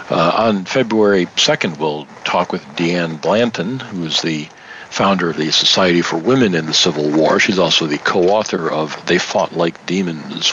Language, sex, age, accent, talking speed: English, male, 50-69, American, 170 wpm